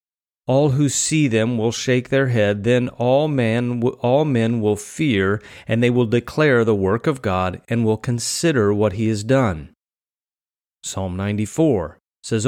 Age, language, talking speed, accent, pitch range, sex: 30-49, English, 155 wpm, American, 110-145 Hz, male